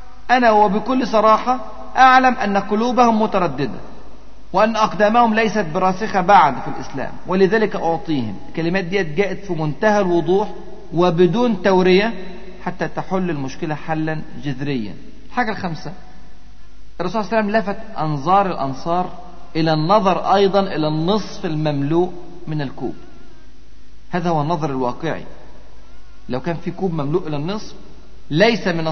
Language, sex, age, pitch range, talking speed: Arabic, male, 50-69, 160-215 Hz, 125 wpm